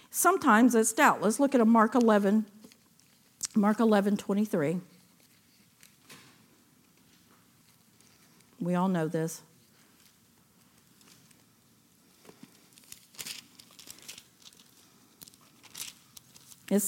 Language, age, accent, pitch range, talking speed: English, 50-69, American, 200-255 Hz, 55 wpm